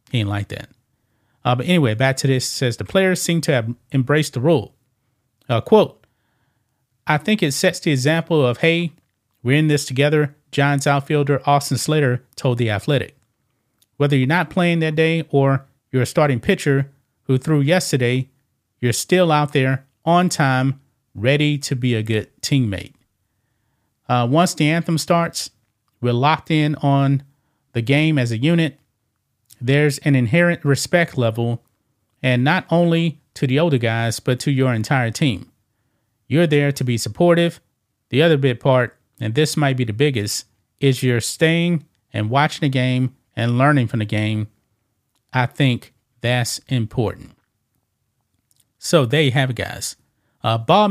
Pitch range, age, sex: 120-150 Hz, 30-49, male